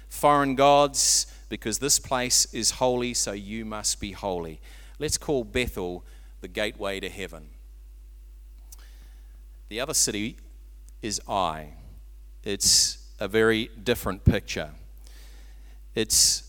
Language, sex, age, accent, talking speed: English, male, 40-59, Australian, 110 wpm